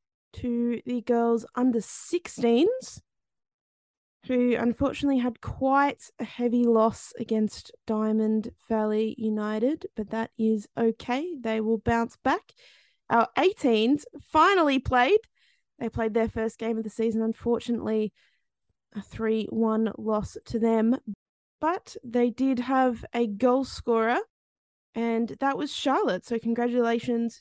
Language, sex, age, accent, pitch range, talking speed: English, female, 20-39, Australian, 220-265 Hz, 120 wpm